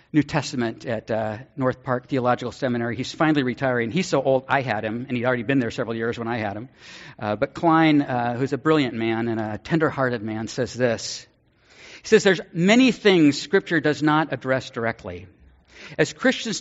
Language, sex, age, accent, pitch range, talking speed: English, male, 50-69, American, 125-180 Hz, 195 wpm